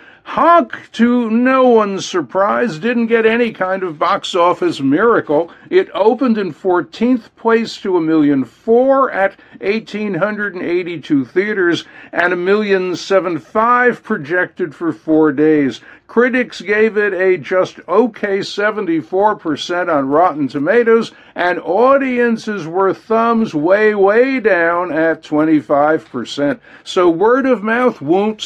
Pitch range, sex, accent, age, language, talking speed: 180-240 Hz, male, American, 60-79, English, 120 wpm